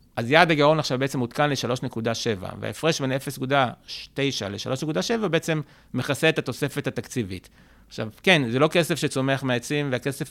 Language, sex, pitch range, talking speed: Hebrew, male, 120-150 Hz, 140 wpm